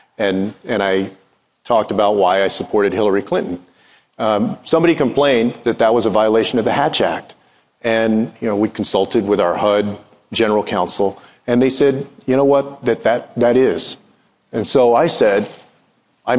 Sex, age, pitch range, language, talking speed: male, 40-59, 110-135 Hz, English, 170 wpm